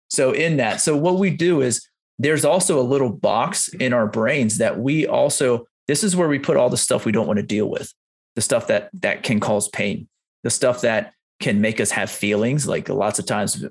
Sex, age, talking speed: male, 30-49, 230 wpm